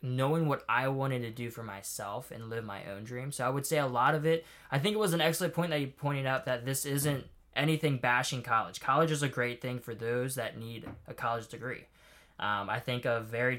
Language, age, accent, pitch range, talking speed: English, 20-39, American, 120-145 Hz, 245 wpm